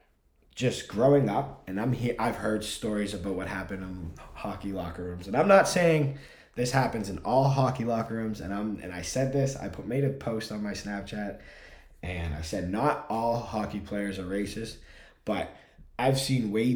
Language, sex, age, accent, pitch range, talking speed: English, male, 20-39, American, 85-110 Hz, 195 wpm